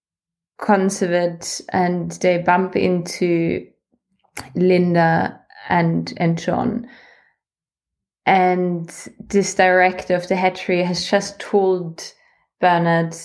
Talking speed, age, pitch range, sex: 85 wpm, 20-39, 175-195 Hz, female